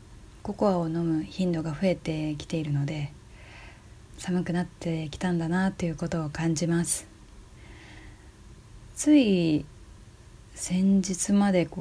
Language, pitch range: Japanese, 115-175 Hz